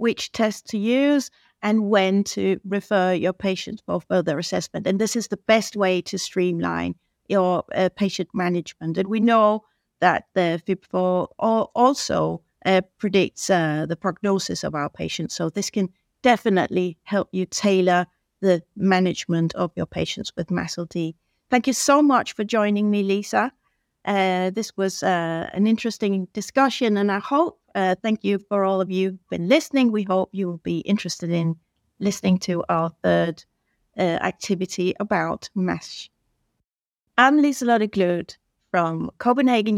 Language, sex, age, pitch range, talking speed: English, female, 60-79, 180-220 Hz, 155 wpm